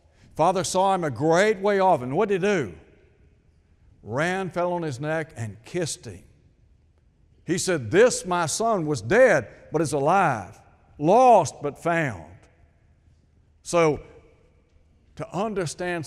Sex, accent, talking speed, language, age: male, American, 135 wpm, English, 60-79